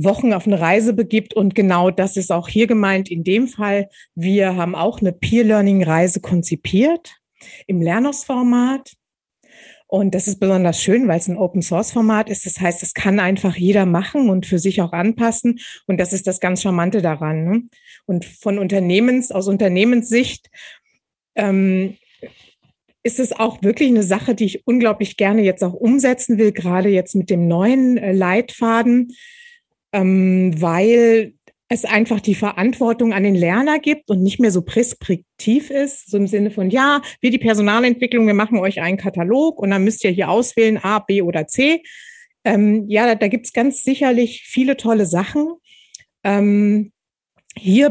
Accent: German